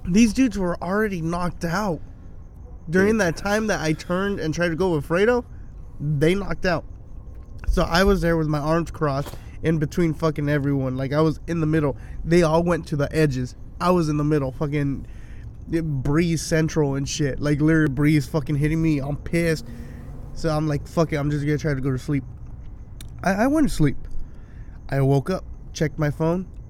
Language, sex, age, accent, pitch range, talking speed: English, male, 20-39, American, 135-160 Hz, 195 wpm